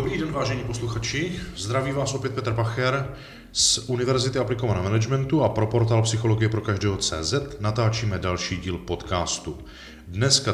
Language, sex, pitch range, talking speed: Czech, male, 95-115 Hz, 140 wpm